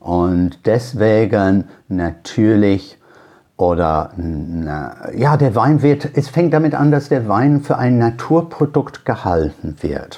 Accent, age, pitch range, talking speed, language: German, 60-79, 100-135 Hz, 120 wpm, German